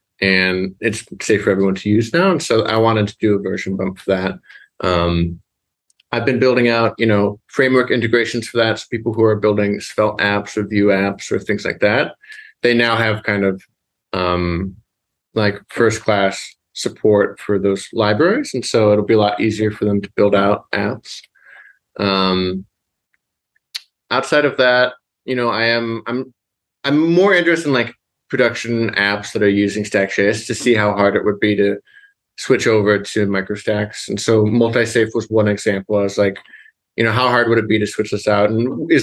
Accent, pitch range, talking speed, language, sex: American, 100-120 Hz, 190 wpm, English, male